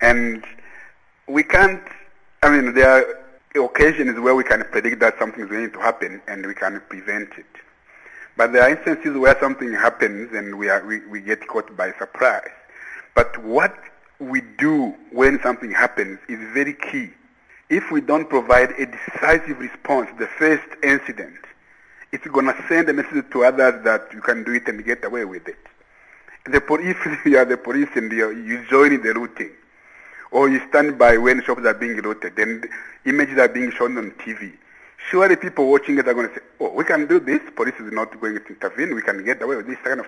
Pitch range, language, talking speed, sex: 115-155 Hz, English, 200 wpm, male